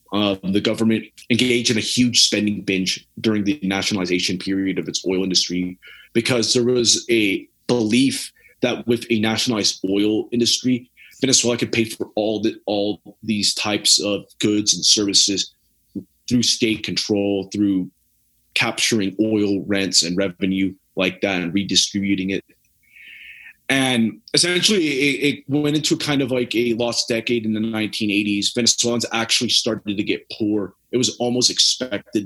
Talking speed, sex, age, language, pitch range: 145 wpm, male, 30-49, English, 100-120 Hz